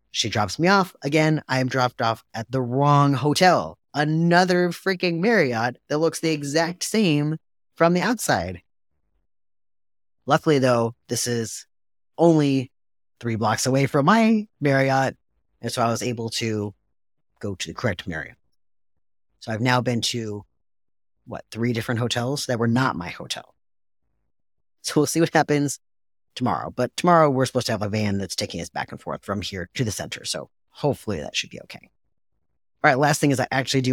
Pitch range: 105-150 Hz